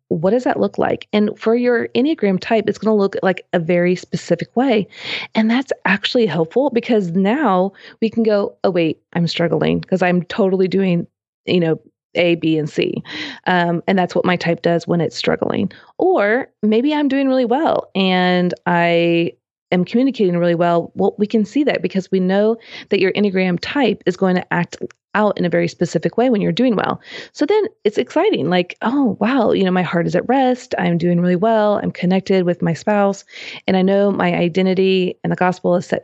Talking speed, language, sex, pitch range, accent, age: 205 wpm, English, female, 175-225 Hz, American, 30-49